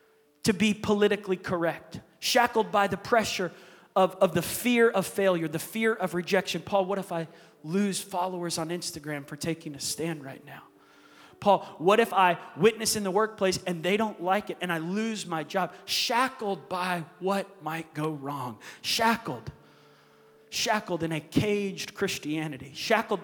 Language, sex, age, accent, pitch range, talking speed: English, male, 30-49, American, 180-230 Hz, 165 wpm